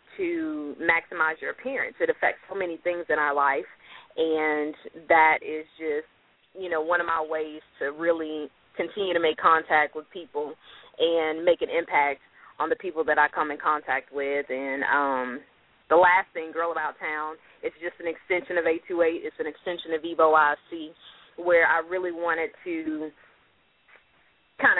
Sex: female